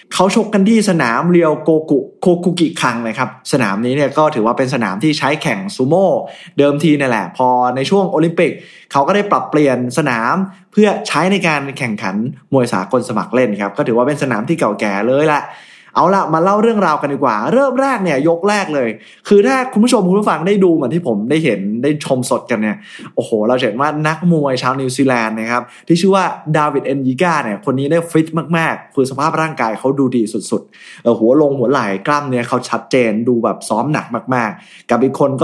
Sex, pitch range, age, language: male, 130-175 Hz, 20-39, Thai